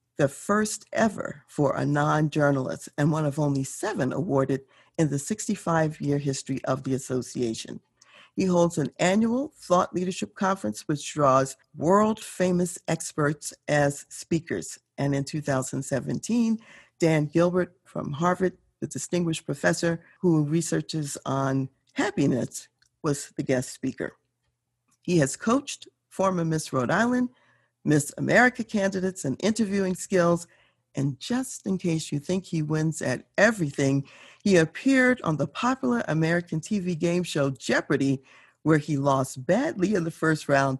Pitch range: 140-185 Hz